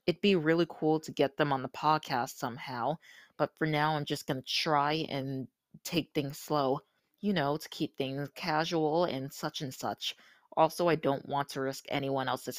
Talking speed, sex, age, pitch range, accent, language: 195 wpm, female, 20-39, 135-155 Hz, American, English